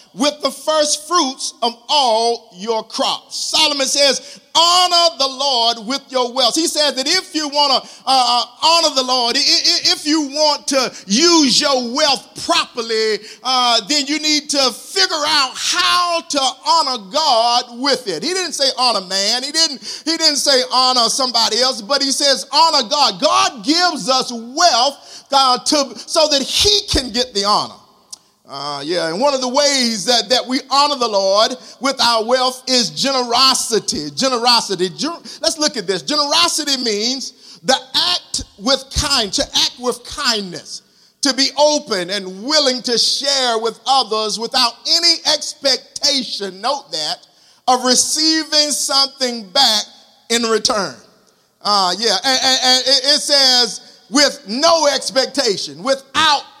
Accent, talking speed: American, 155 wpm